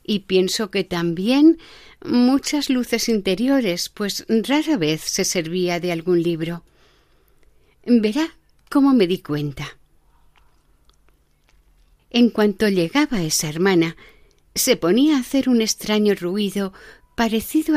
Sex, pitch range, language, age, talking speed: female, 160-215 Hz, Spanish, 50-69, 110 wpm